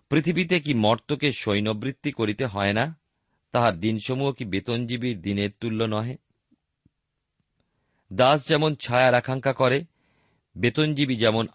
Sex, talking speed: male, 75 wpm